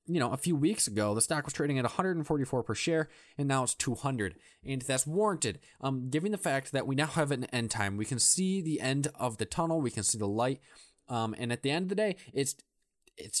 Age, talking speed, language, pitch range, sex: 20-39, 245 wpm, English, 120-160 Hz, male